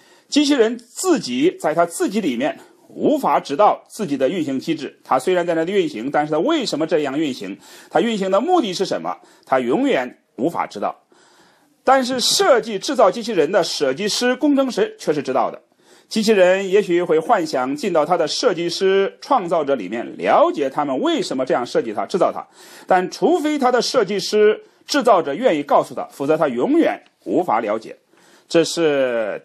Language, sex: English, male